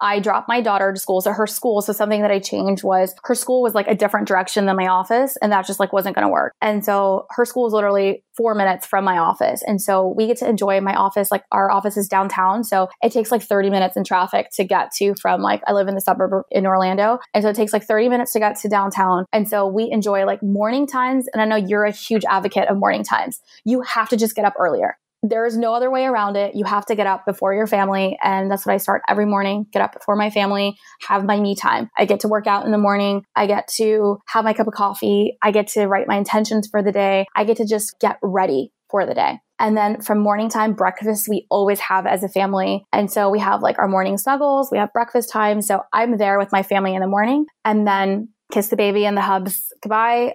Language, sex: English, female